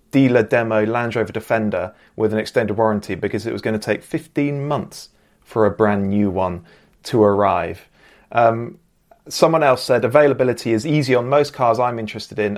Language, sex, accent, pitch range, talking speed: English, male, British, 105-135 Hz, 175 wpm